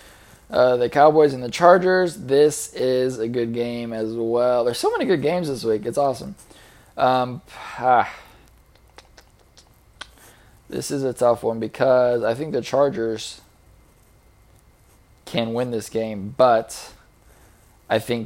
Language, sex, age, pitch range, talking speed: English, male, 20-39, 110-135 Hz, 135 wpm